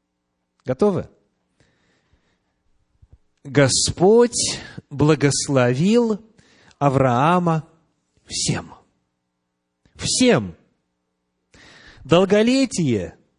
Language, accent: Russian, native